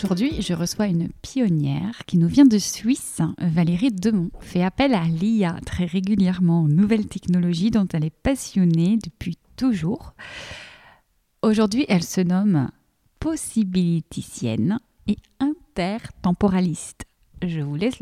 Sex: female